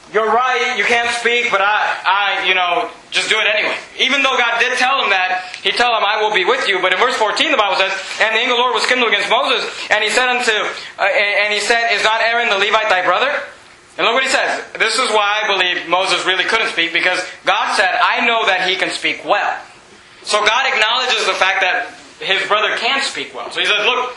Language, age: English, 30-49